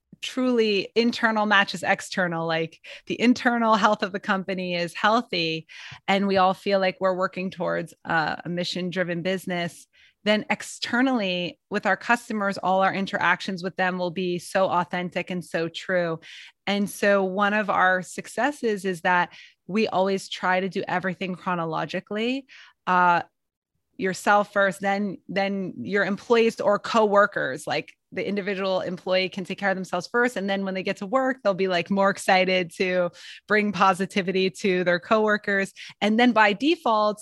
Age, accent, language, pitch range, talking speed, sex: 20-39, American, English, 180-210 Hz, 155 wpm, female